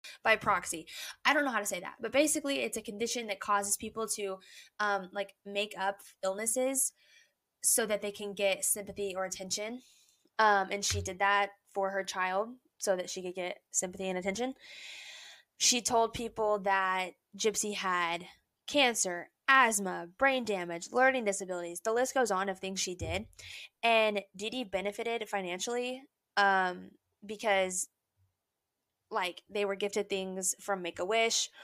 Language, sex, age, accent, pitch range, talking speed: English, female, 20-39, American, 190-225 Hz, 150 wpm